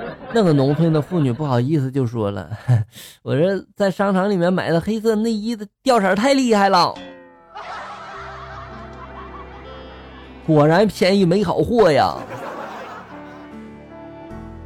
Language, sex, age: Chinese, male, 20-39